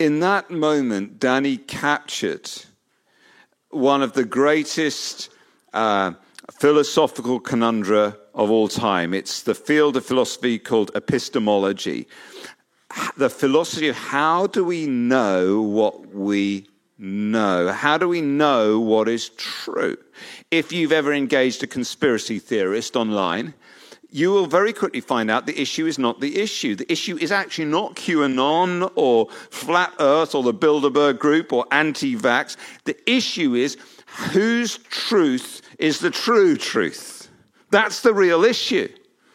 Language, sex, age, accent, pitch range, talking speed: English, male, 50-69, British, 125-180 Hz, 135 wpm